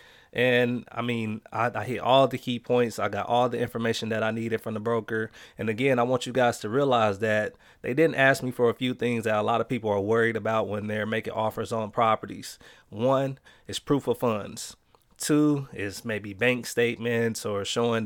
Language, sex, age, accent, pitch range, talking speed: English, male, 30-49, American, 110-125 Hz, 215 wpm